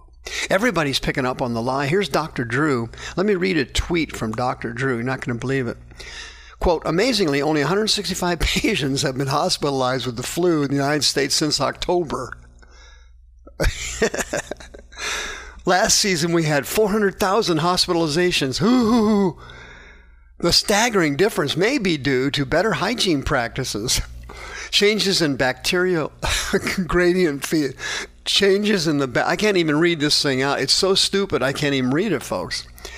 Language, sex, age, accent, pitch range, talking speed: English, male, 50-69, American, 125-185 Hz, 150 wpm